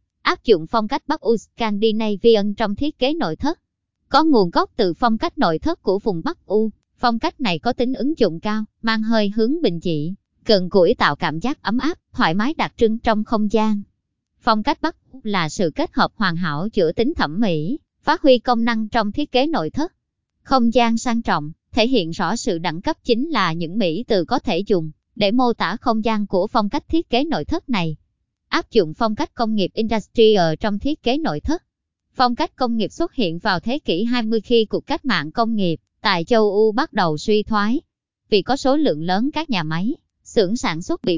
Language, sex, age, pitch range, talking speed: Vietnamese, male, 20-39, 195-255 Hz, 215 wpm